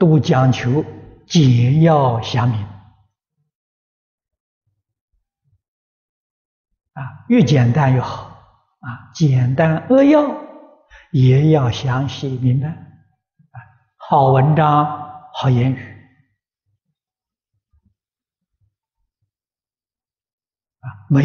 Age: 60-79